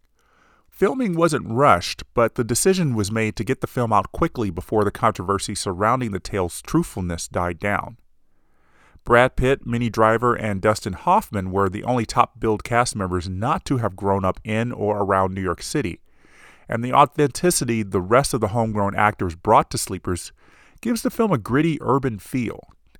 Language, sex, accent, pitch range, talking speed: English, male, American, 95-130 Hz, 170 wpm